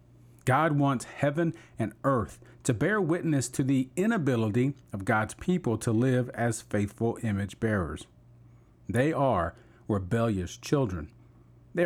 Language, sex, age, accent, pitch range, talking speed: English, male, 40-59, American, 110-140 Hz, 125 wpm